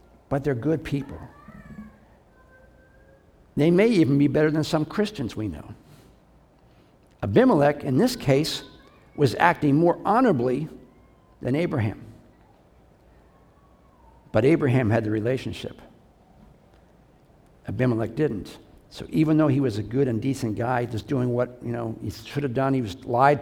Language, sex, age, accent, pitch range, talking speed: English, male, 60-79, American, 110-145 Hz, 135 wpm